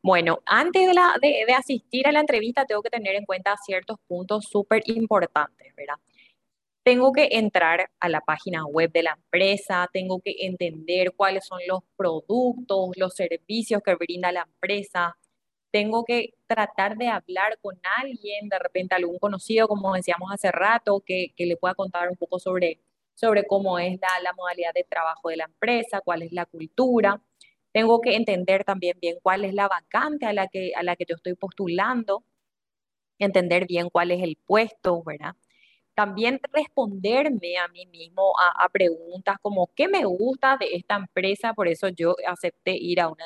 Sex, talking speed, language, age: female, 180 wpm, Spanish, 20-39